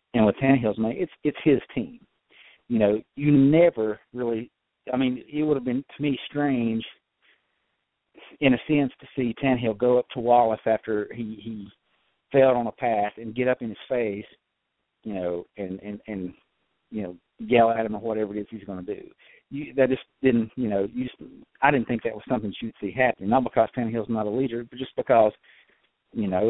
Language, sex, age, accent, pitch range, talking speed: English, male, 50-69, American, 110-130 Hz, 210 wpm